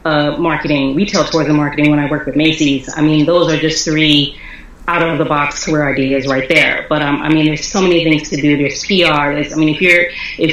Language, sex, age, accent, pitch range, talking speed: English, female, 30-49, American, 155-185 Hz, 230 wpm